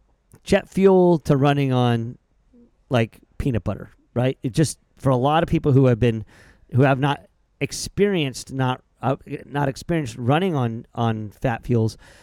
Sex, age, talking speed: male, 40-59, 155 wpm